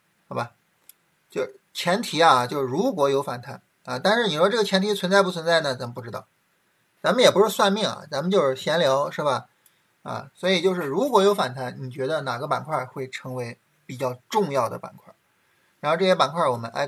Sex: male